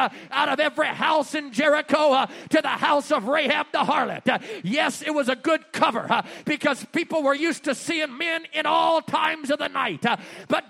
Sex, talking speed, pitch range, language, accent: male, 210 wpm, 300-360 Hz, English, American